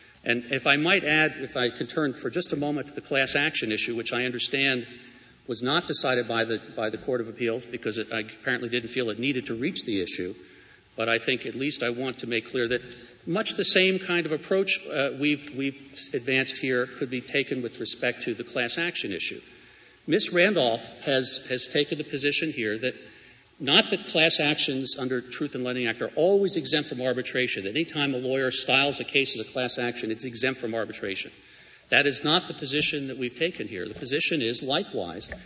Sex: male